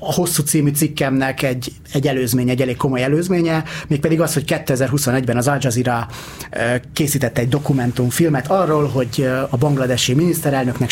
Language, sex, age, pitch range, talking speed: Hungarian, male, 30-49, 125-150 Hz, 155 wpm